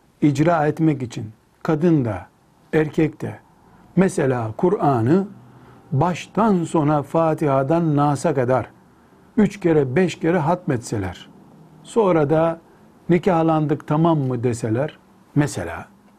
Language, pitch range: Turkish, 135-180 Hz